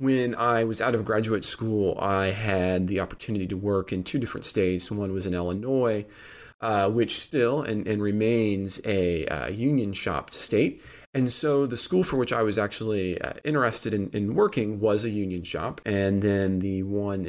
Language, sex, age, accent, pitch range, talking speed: English, male, 30-49, American, 95-120 Hz, 185 wpm